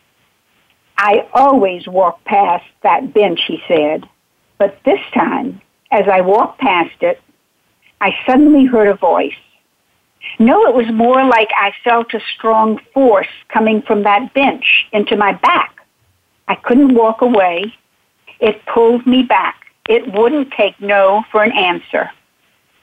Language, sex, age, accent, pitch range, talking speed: English, female, 60-79, American, 205-260 Hz, 140 wpm